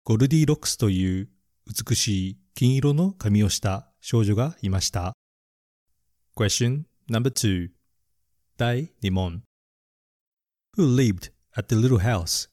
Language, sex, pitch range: Japanese, male, 95-130 Hz